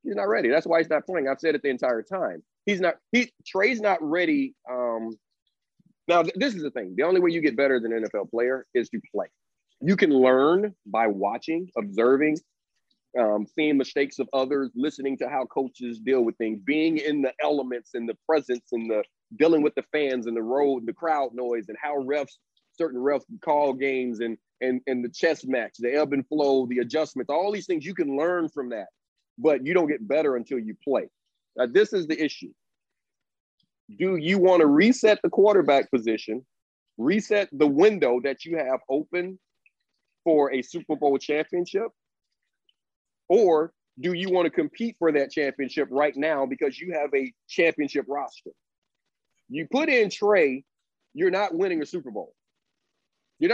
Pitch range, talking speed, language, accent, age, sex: 130-185 Hz, 185 wpm, English, American, 30-49, male